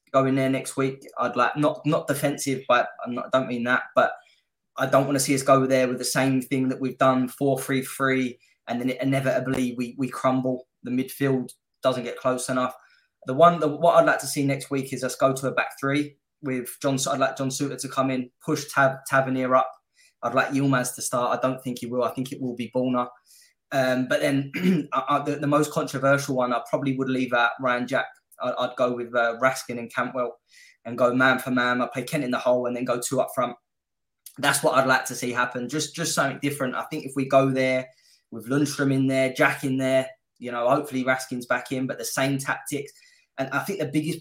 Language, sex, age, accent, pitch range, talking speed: English, male, 20-39, British, 125-140 Hz, 235 wpm